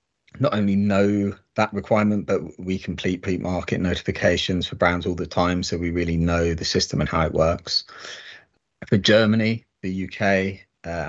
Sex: male